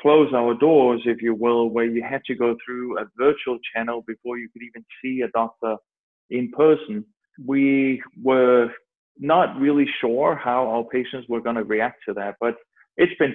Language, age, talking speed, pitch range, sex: English, 30-49, 185 wpm, 120-145 Hz, male